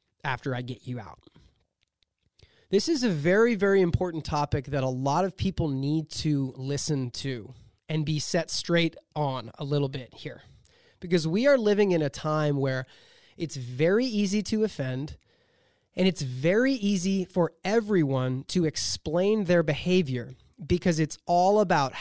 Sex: male